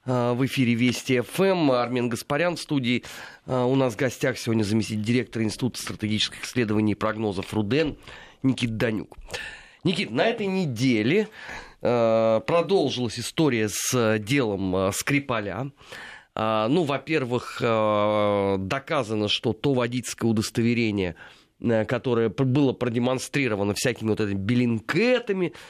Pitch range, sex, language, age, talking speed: 115-145 Hz, male, Russian, 30-49, 105 wpm